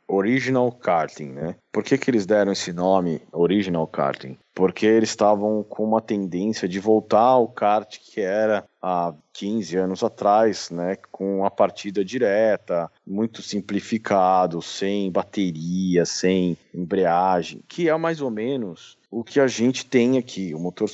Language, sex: Portuguese, male